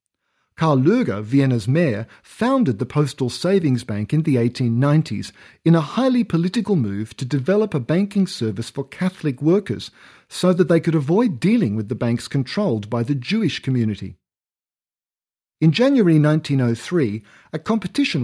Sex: male